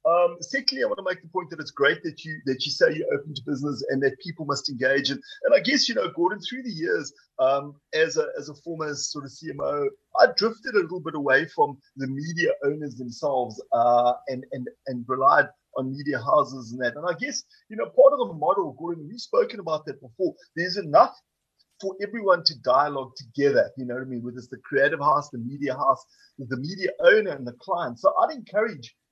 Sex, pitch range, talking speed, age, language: male, 145-220 Hz, 225 wpm, 30-49, English